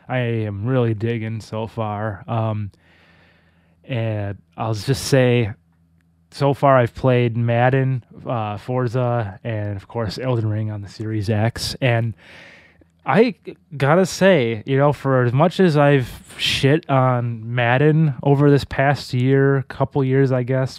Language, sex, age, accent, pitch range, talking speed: English, male, 20-39, American, 110-140 Hz, 145 wpm